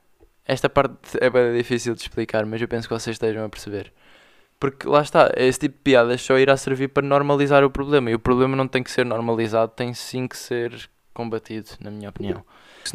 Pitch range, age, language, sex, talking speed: 115-130 Hz, 20-39, Portuguese, male, 215 wpm